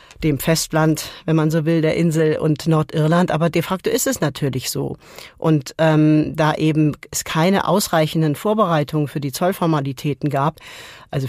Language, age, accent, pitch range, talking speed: German, 40-59, German, 150-175 Hz, 160 wpm